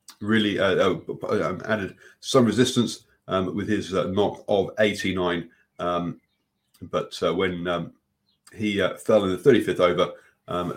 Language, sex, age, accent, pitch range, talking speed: English, male, 30-49, British, 90-125 Hz, 140 wpm